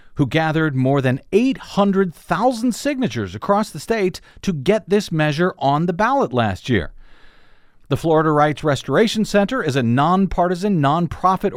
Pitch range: 130-185 Hz